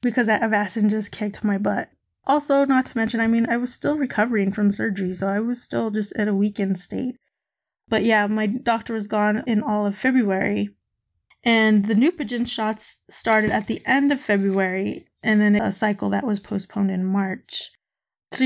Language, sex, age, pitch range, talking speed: English, female, 20-39, 200-235 Hz, 190 wpm